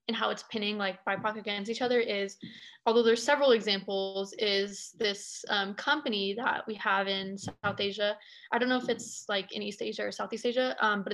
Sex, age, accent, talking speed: female, 20-39, American, 205 wpm